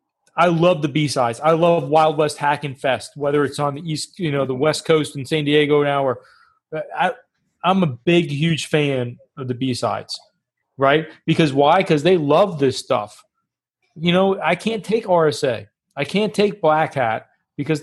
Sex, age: male, 30-49